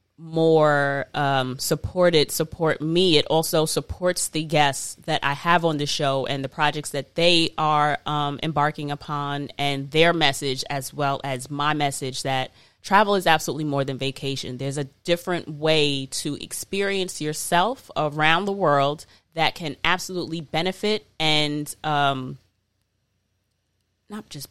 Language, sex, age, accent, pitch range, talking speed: English, female, 20-39, American, 140-175 Hz, 140 wpm